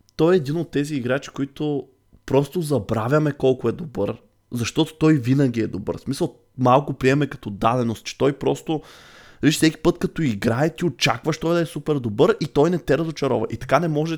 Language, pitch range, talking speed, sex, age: Bulgarian, 115-155 Hz, 200 wpm, male, 20-39